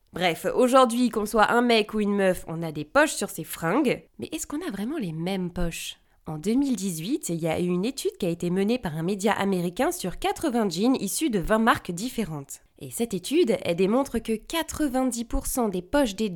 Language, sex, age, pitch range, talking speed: French, female, 20-39, 185-250 Hz, 215 wpm